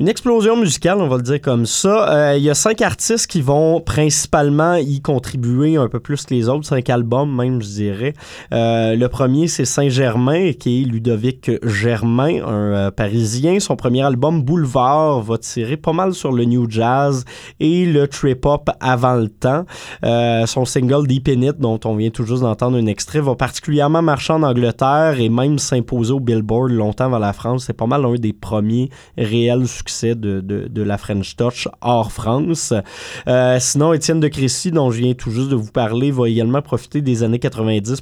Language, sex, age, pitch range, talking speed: French, male, 20-39, 115-140 Hz, 195 wpm